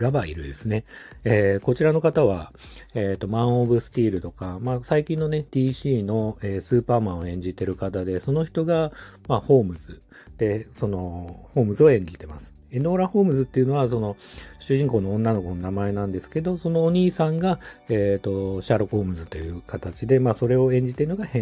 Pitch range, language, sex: 90-135 Hz, Japanese, male